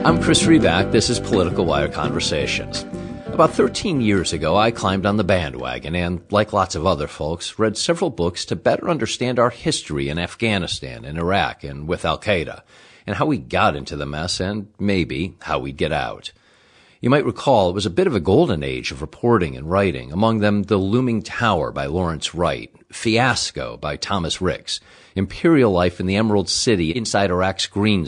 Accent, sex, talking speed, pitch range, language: American, male, 185 wpm, 85-105 Hz, English